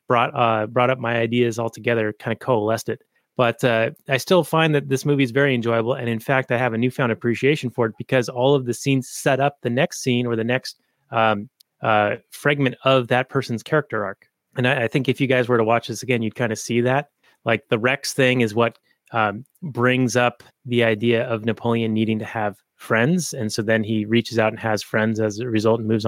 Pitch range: 115-135 Hz